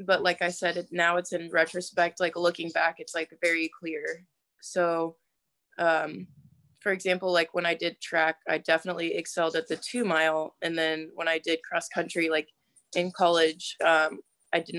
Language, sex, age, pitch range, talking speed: English, female, 20-39, 160-175 Hz, 180 wpm